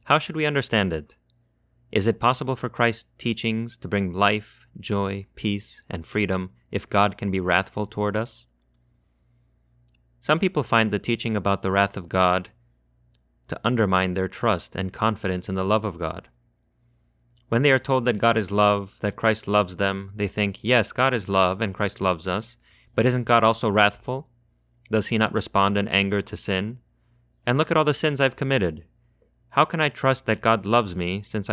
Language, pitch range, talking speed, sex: English, 95-115 Hz, 185 wpm, male